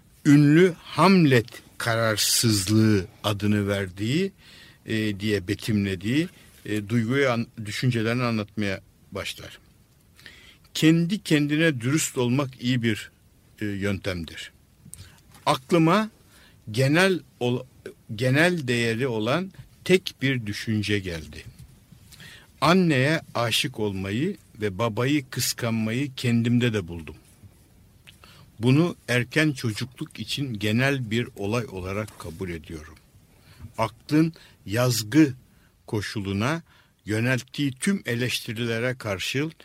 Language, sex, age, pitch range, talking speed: Turkish, male, 60-79, 105-140 Hz, 90 wpm